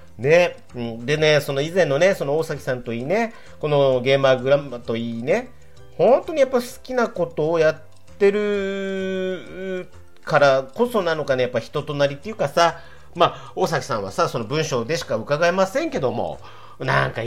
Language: Japanese